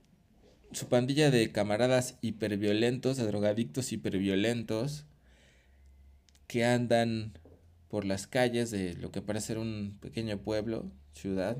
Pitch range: 95-120 Hz